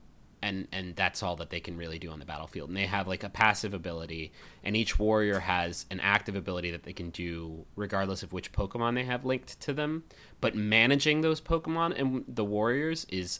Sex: male